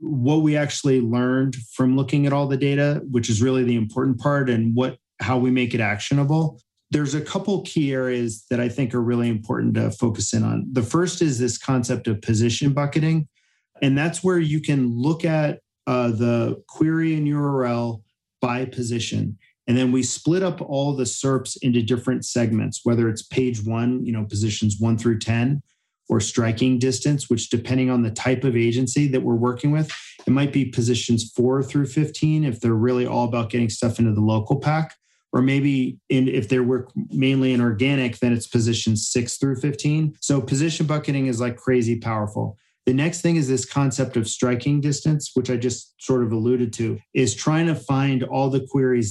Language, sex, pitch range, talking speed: English, male, 120-140 Hz, 195 wpm